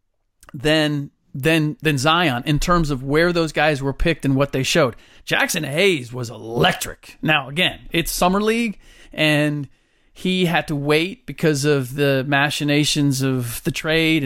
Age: 40-59